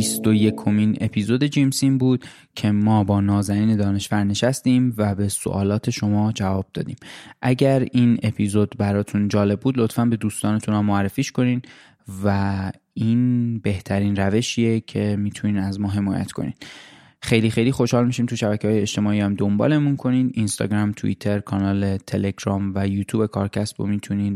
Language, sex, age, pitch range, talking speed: Persian, male, 20-39, 100-120 Hz, 145 wpm